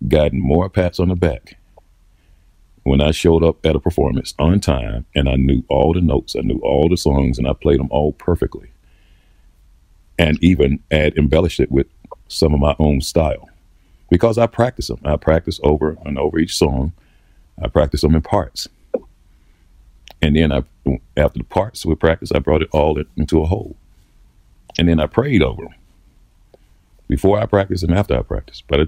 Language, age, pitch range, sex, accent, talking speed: English, 50-69, 75-90 Hz, male, American, 185 wpm